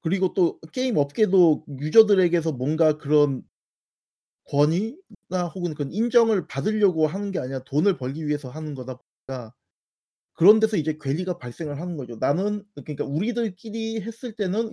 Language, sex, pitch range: Korean, male, 145-205 Hz